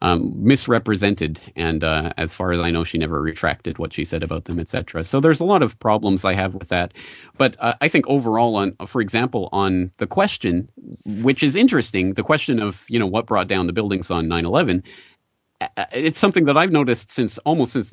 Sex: male